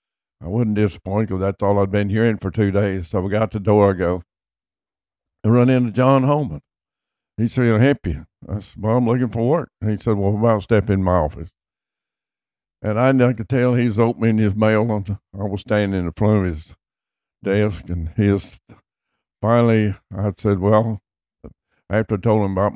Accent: American